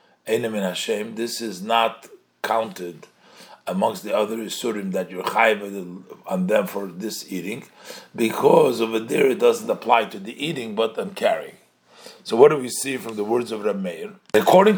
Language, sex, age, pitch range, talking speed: English, male, 50-69, 110-180 Hz, 160 wpm